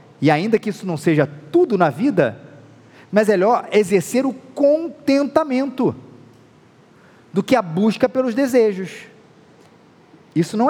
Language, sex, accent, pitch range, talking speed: Portuguese, male, Brazilian, 150-225 Hz, 130 wpm